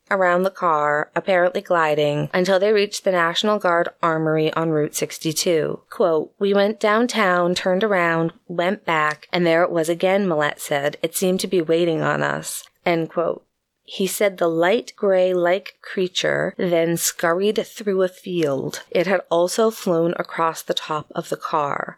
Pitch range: 160-195 Hz